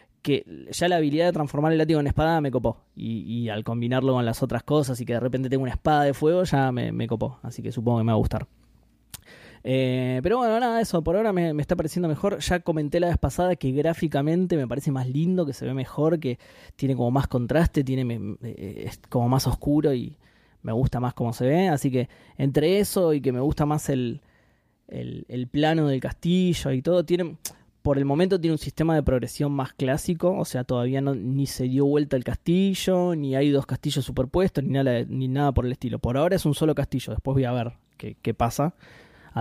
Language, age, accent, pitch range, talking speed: Spanish, 20-39, Argentinian, 125-155 Hz, 225 wpm